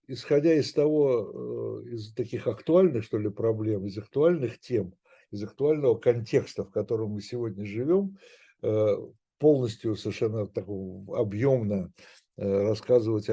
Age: 60-79